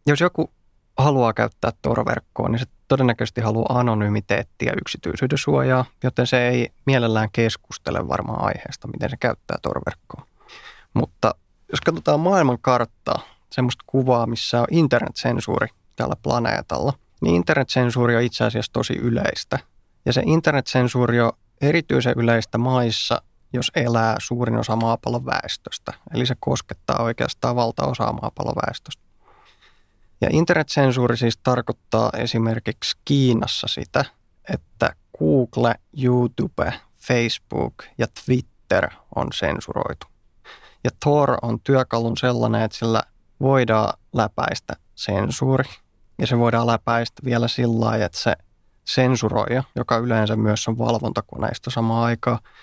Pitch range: 115-130 Hz